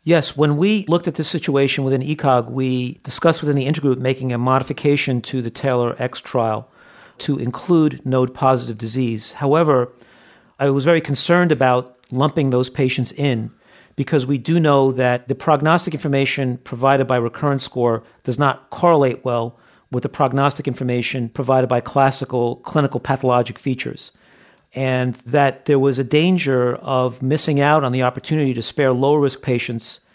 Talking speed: 155 wpm